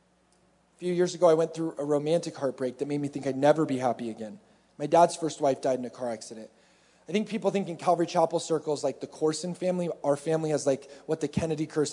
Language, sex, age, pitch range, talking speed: English, male, 30-49, 150-205 Hz, 240 wpm